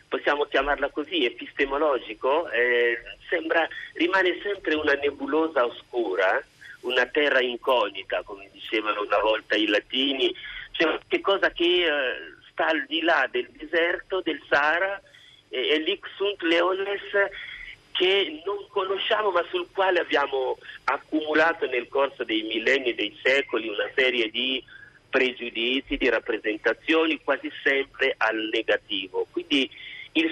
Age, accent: 50-69, native